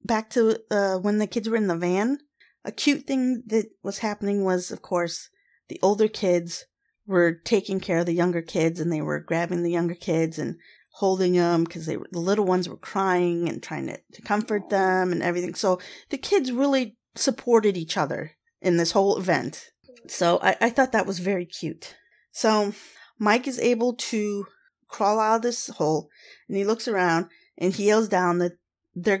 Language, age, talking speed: English, 30-49, 190 wpm